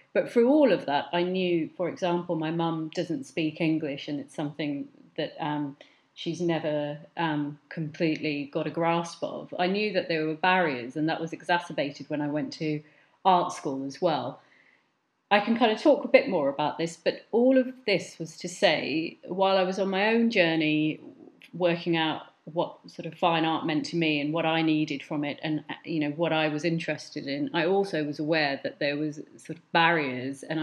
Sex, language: female, English